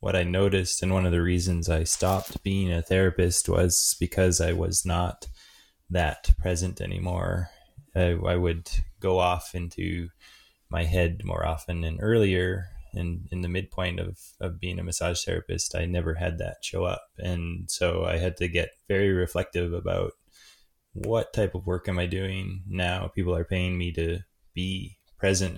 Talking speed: 170 wpm